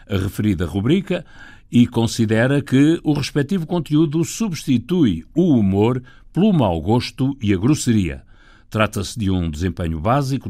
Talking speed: 130 wpm